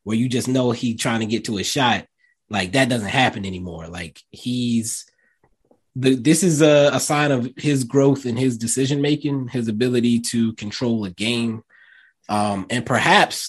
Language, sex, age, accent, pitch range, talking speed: English, male, 20-39, American, 105-140 Hz, 175 wpm